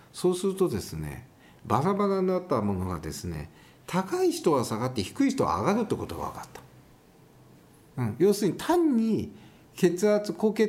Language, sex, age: Japanese, male, 50-69